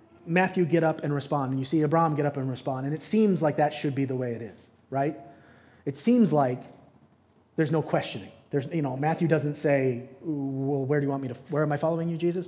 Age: 30-49